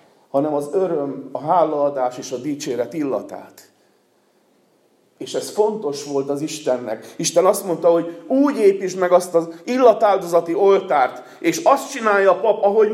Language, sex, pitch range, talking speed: Hungarian, male, 125-195 Hz, 150 wpm